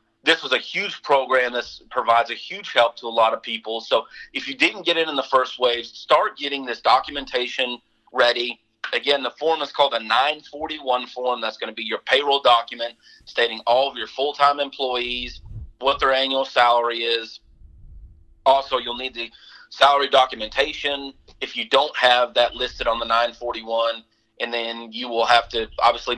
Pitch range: 115-135 Hz